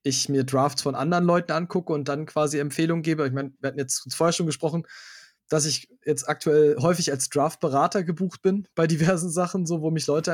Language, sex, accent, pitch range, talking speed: German, male, German, 145-175 Hz, 225 wpm